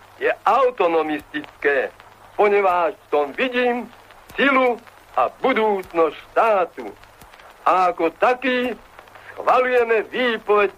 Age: 60-79